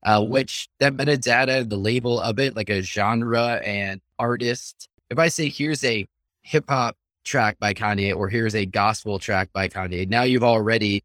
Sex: male